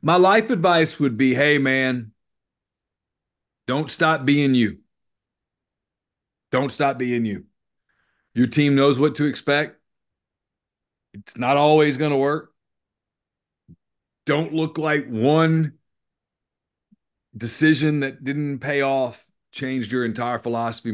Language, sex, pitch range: English, male, 115-135 Hz